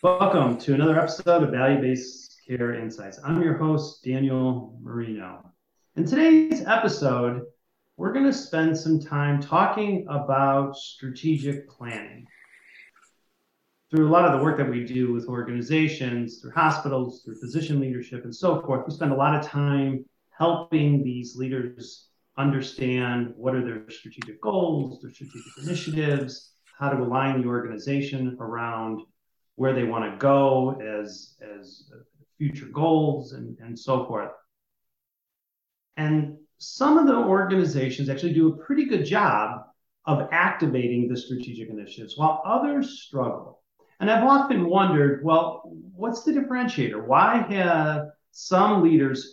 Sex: male